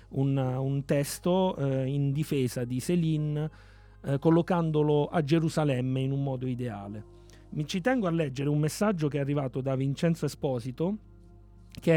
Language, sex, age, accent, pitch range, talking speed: Italian, male, 30-49, native, 120-150 Hz, 150 wpm